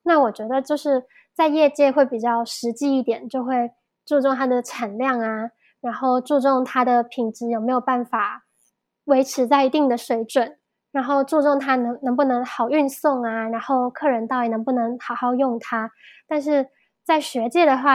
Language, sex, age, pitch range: Chinese, female, 10-29, 240-285 Hz